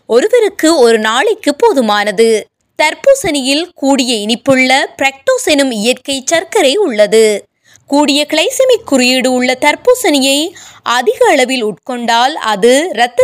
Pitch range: 230-325 Hz